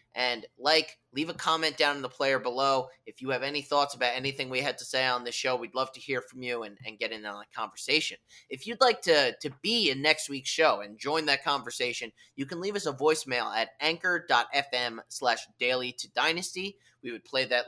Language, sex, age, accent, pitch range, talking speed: English, male, 30-49, American, 120-150 Hz, 225 wpm